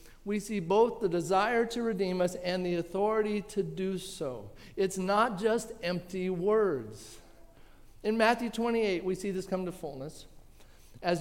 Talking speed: 155 wpm